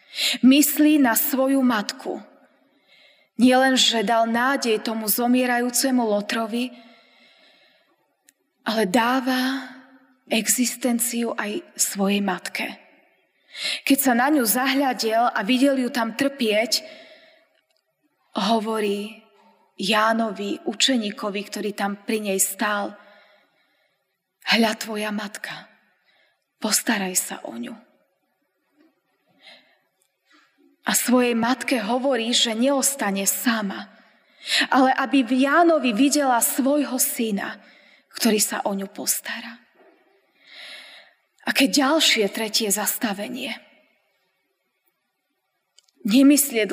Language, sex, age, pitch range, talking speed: Slovak, female, 20-39, 220-275 Hz, 85 wpm